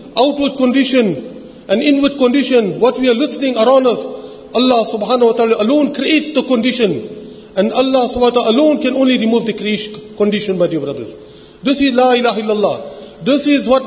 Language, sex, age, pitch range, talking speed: English, male, 50-69, 220-275 Hz, 175 wpm